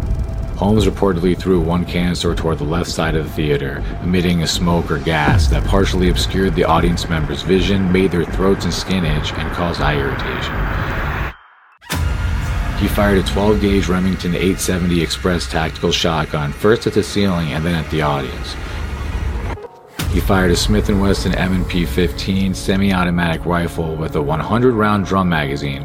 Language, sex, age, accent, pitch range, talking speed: English, male, 40-59, American, 80-95 Hz, 155 wpm